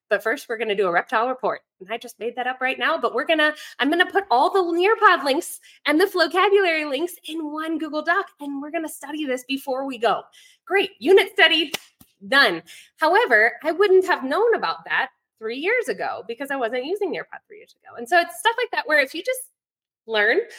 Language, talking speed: English, 220 wpm